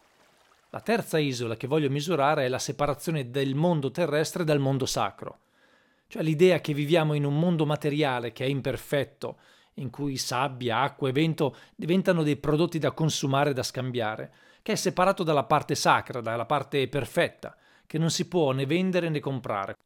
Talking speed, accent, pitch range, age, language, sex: 170 wpm, native, 130-160 Hz, 40-59, Italian, male